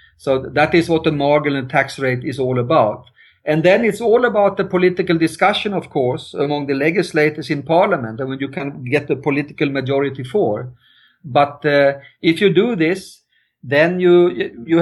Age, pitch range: 50-69, 140-170 Hz